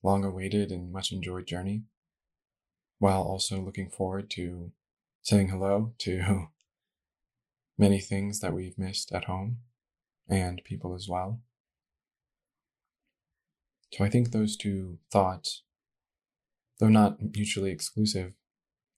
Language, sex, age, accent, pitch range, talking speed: English, male, 20-39, American, 90-100 Hz, 105 wpm